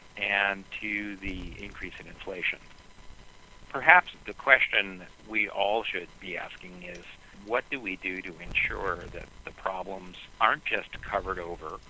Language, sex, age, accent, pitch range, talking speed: English, male, 50-69, American, 90-110 Hz, 140 wpm